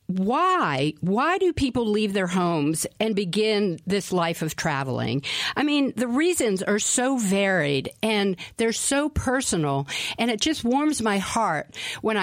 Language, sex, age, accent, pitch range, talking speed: English, female, 50-69, American, 170-245 Hz, 150 wpm